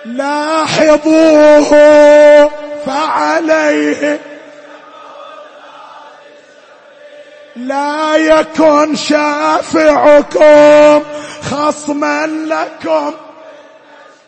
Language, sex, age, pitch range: Arabic, male, 30-49, 290-310 Hz